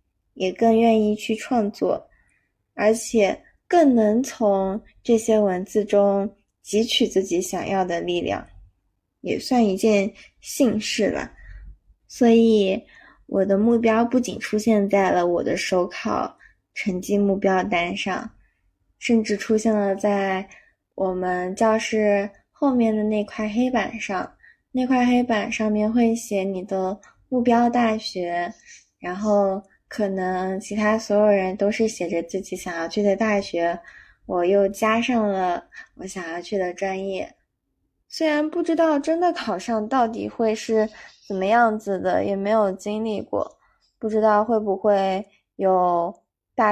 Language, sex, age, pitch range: Chinese, female, 20-39, 190-230 Hz